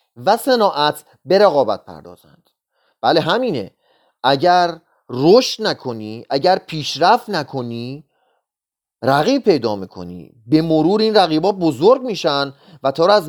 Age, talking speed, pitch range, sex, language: 30-49, 115 wpm, 150-210 Hz, male, Persian